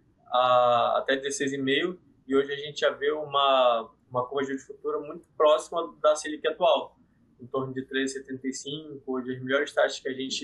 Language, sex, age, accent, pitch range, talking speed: Portuguese, male, 20-39, Brazilian, 135-155 Hz, 165 wpm